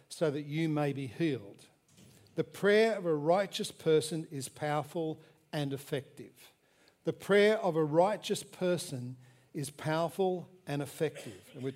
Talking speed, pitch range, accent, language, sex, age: 145 wpm, 140-175 Hz, Australian, English, male, 60-79